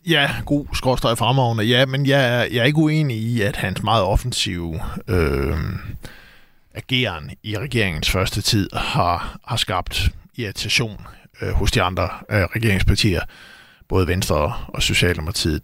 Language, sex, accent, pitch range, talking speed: Danish, male, native, 95-125 Hz, 140 wpm